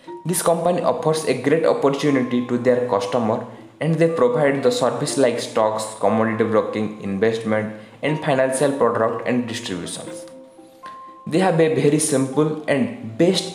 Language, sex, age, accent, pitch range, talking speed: English, male, 20-39, Indian, 125-160 Hz, 135 wpm